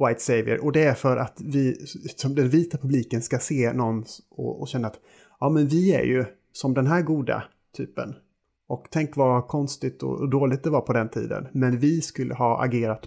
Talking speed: 205 wpm